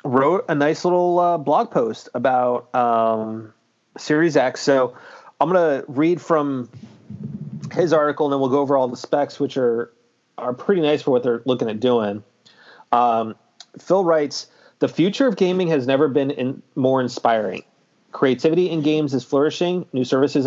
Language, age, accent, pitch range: English, 30-49, American, 120-145 Hz